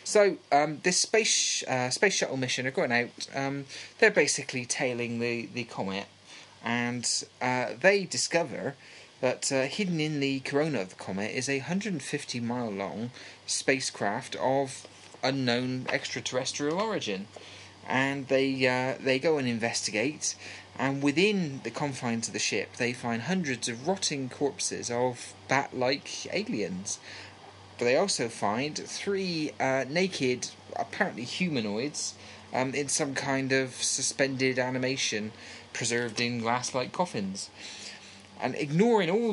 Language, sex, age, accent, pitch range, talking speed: English, male, 30-49, British, 110-140 Hz, 135 wpm